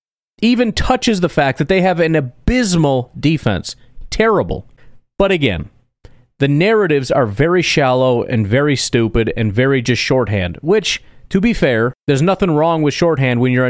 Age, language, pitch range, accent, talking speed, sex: 30-49, English, 120-155 Hz, American, 160 wpm, male